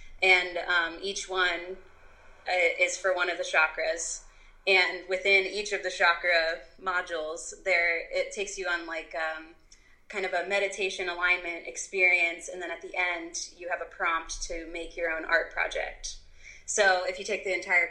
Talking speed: 175 wpm